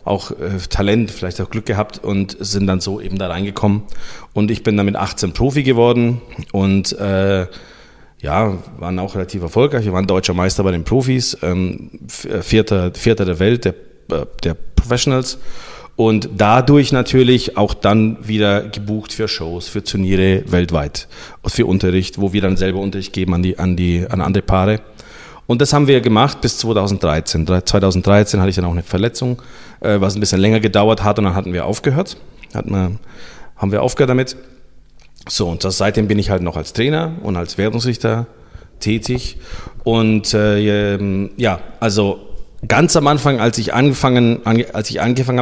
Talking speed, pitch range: 165 wpm, 95-115 Hz